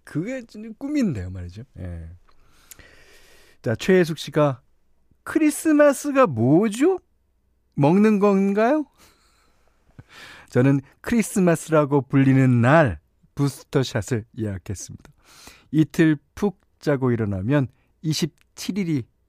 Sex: male